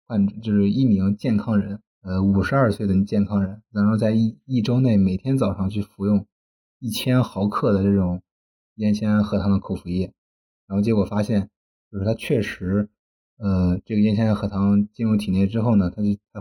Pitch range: 95-105 Hz